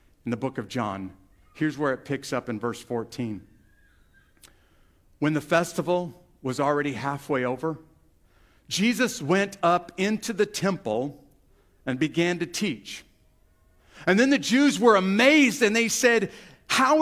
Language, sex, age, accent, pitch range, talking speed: English, male, 50-69, American, 150-220 Hz, 140 wpm